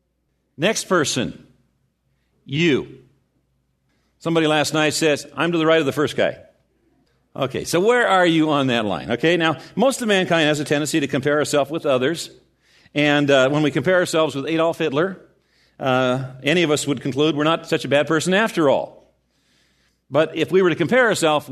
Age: 50-69